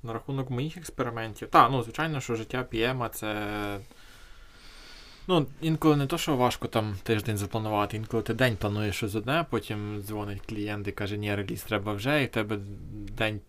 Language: Ukrainian